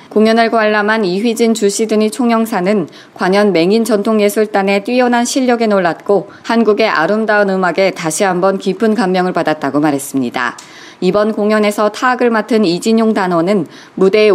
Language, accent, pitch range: Korean, native, 190-230 Hz